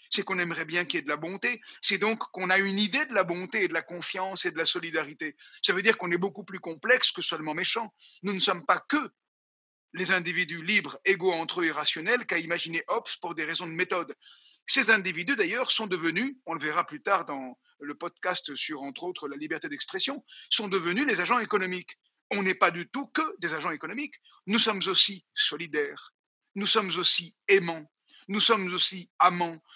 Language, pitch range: French, 170-230 Hz